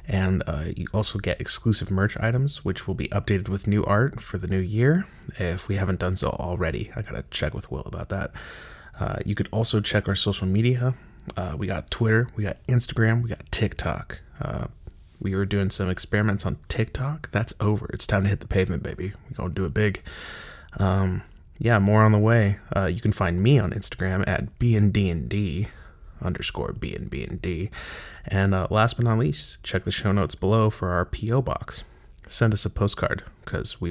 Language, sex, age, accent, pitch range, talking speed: English, male, 20-39, American, 95-110 Hz, 205 wpm